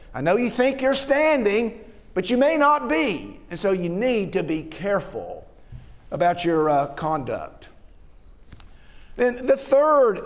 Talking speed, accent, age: 145 wpm, American, 50-69